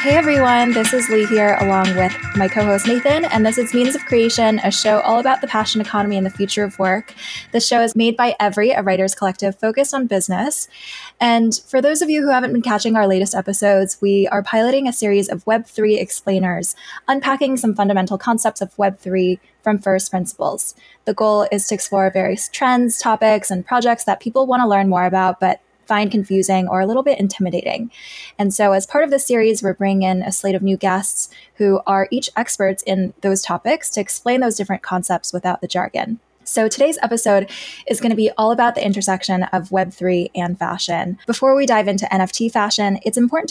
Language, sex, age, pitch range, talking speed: English, female, 10-29, 190-235 Hz, 205 wpm